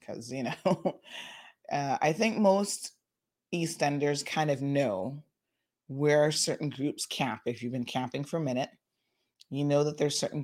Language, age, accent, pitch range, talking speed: English, 30-49, American, 130-170 Hz, 155 wpm